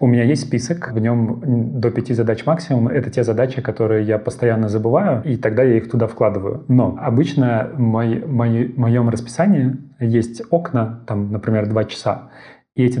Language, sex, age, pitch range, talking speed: Russian, male, 30-49, 115-130 Hz, 170 wpm